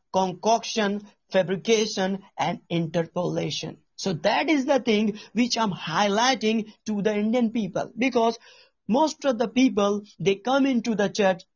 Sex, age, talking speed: male, 50-69, 140 wpm